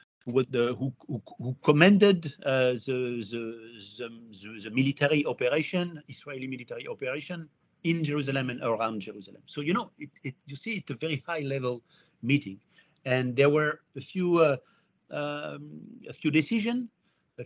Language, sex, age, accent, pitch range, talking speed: English, male, 50-69, French, 115-150 Hz, 155 wpm